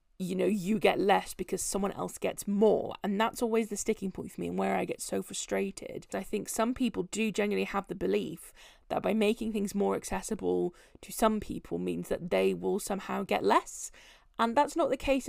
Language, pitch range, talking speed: English, 185-220 Hz, 210 wpm